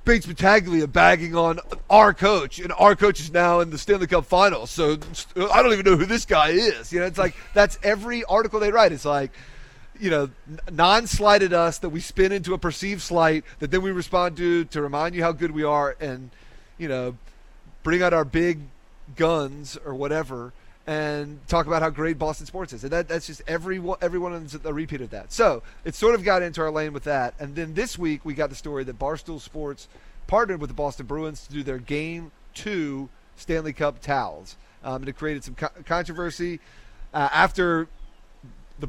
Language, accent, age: English, American, 30-49